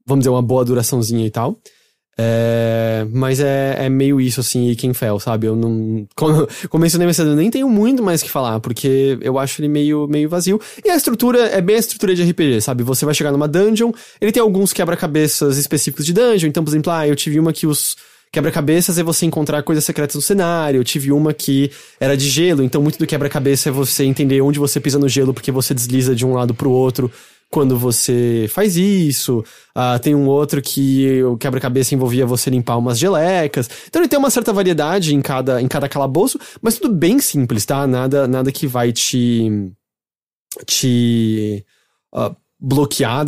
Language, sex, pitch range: English, male, 130-180 Hz